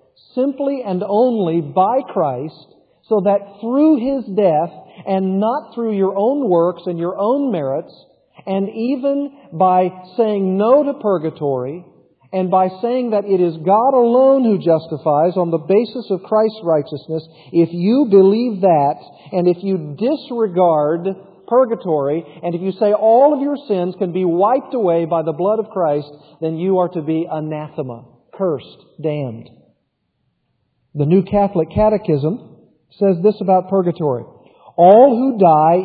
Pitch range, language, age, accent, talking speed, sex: 160-220 Hz, English, 50-69, American, 145 wpm, male